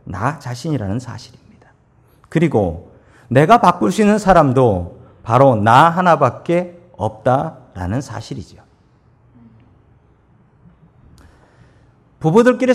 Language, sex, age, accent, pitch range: Korean, male, 40-59, native, 120-195 Hz